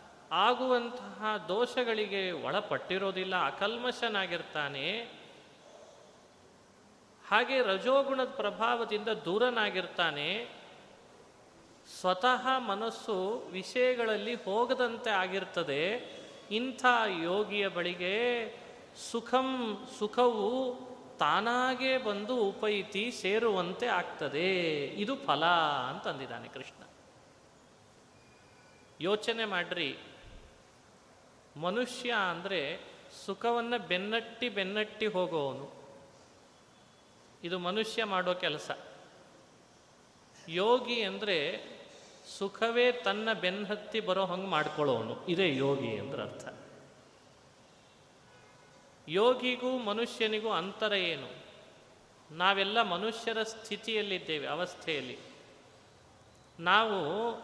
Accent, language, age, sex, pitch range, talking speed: native, Kannada, 30-49, male, 185-235 Hz, 65 wpm